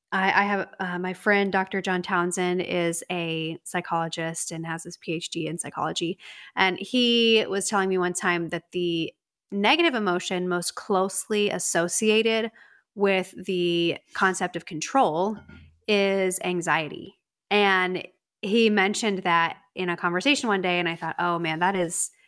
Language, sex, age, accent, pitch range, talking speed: English, female, 20-39, American, 175-205 Hz, 145 wpm